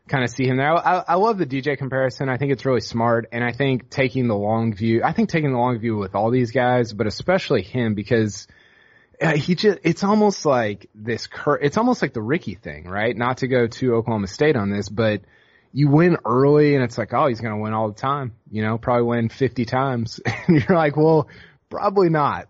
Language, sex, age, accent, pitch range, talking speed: English, male, 20-39, American, 110-145 Hz, 225 wpm